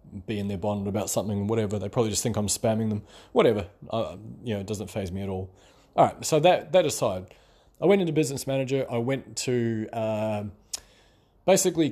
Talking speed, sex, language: 195 wpm, male, English